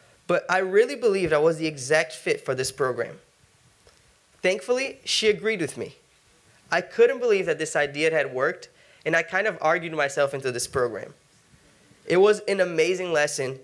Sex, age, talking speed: male, 20-39, 170 wpm